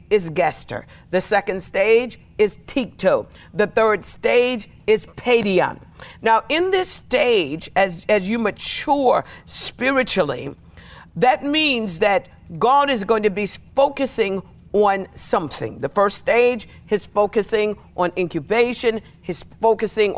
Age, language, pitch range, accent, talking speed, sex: 50-69, English, 195-245 Hz, American, 120 wpm, female